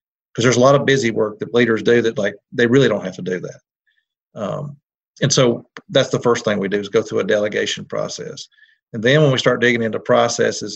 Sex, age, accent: male, 40-59, American